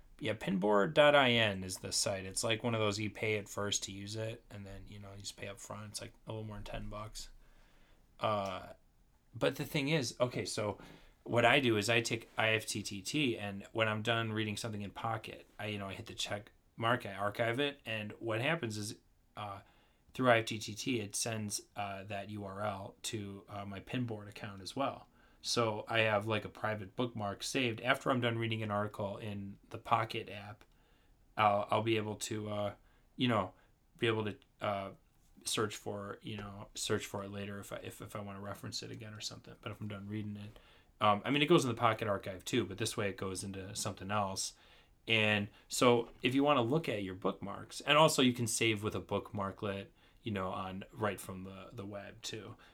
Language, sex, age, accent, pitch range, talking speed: English, male, 30-49, American, 100-115 Hz, 215 wpm